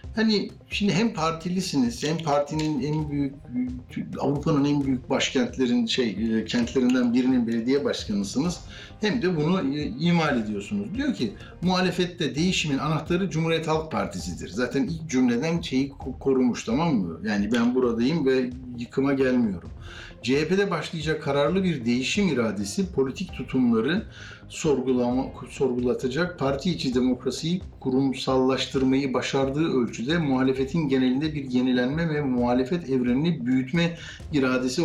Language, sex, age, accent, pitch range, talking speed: Turkish, male, 60-79, native, 125-165 Hz, 115 wpm